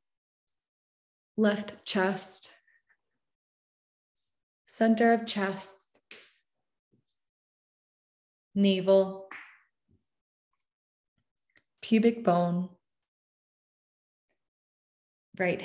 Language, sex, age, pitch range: English, female, 20-39, 175-210 Hz